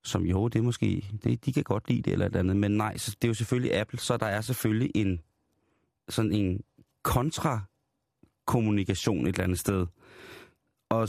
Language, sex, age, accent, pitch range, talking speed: Danish, male, 30-49, native, 100-120 Hz, 195 wpm